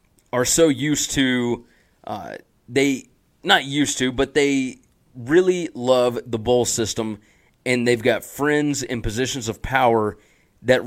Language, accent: English, American